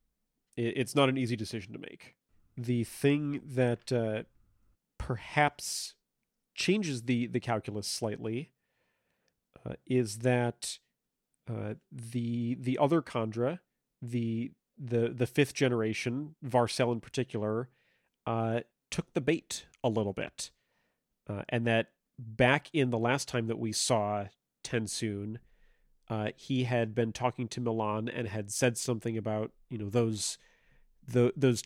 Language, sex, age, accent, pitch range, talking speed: English, male, 40-59, American, 115-135 Hz, 130 wpm